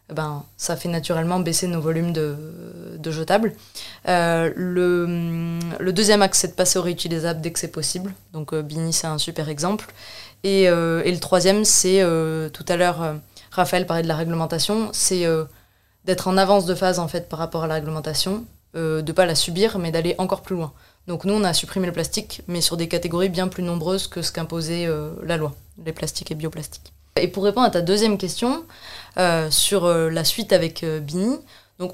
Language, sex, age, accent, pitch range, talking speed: French, female, 20-39, French, 165-195 Hz, 205 wpm